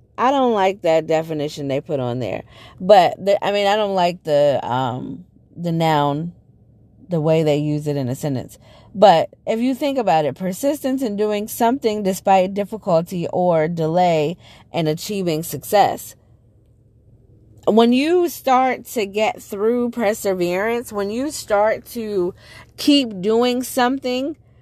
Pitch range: 175-245 Hz